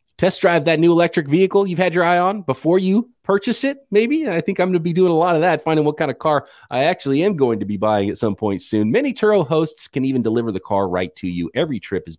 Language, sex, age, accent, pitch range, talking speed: English, male, 30-49, American, 115-160 Hz, 280 wpm